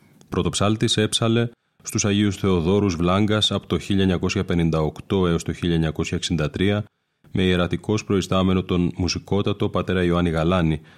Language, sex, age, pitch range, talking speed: Greek, male, 30-49, 85-100 Hz, 110 wpm